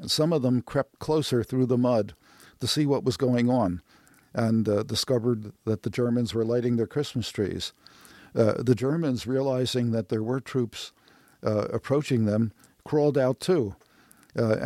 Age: 50-69